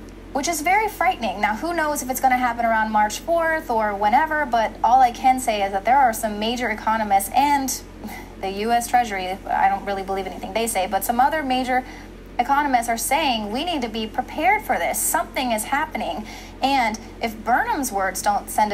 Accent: American